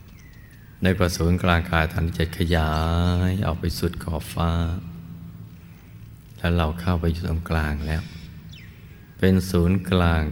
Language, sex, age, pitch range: Thai, male, 60-79, 80-105 Hz